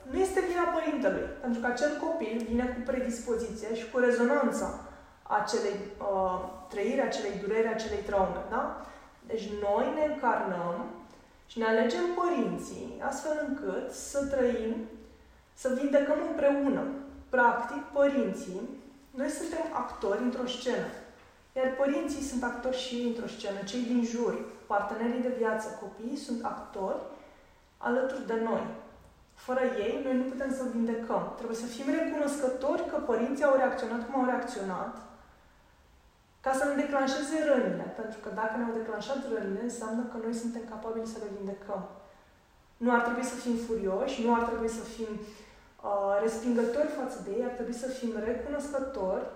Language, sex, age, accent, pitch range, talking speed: Romanian, female, 20-39, native, 225-275 Hz, 150 wpm